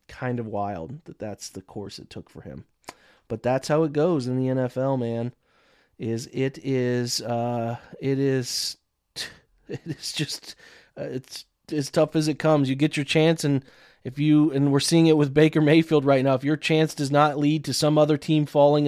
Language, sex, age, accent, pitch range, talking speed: English, male, 30-49, American, 130-150 Hz, 195 wpm